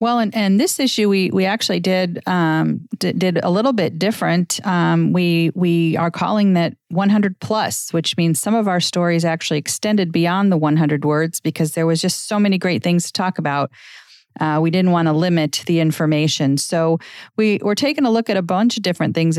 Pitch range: 160-190 Hz